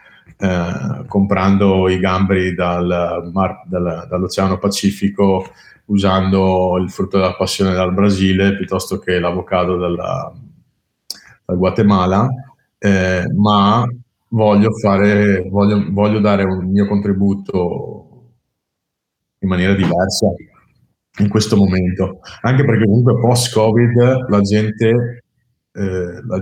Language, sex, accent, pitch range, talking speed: Italian, male, native, 95-105 Hz, 100 wpm